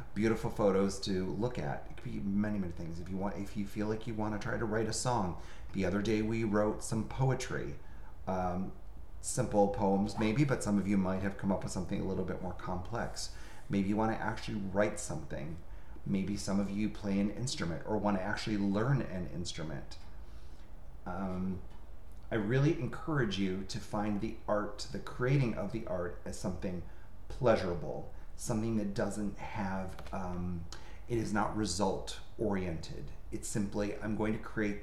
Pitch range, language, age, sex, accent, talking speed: 90-105 Hz, English, 30-49, male, American, 185 wpm